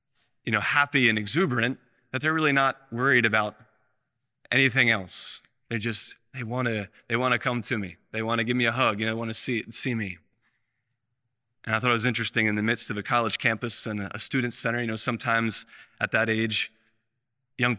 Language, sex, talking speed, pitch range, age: English, male, 205 wpm, 110-125 Hz, 20-39